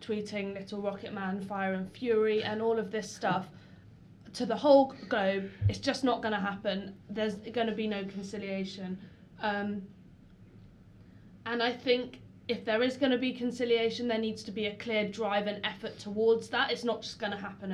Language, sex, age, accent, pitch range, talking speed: English, female, 20-39, British, 185-230 Hz, 190 wpm